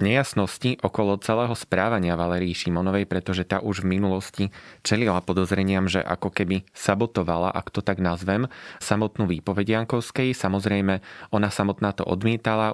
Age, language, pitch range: 30-49, Slovak, 95-110 Hz